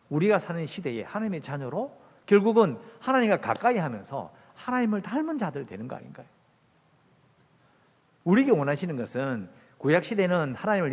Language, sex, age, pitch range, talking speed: English, male, 50-69, 140-210 Hz, 110 wpm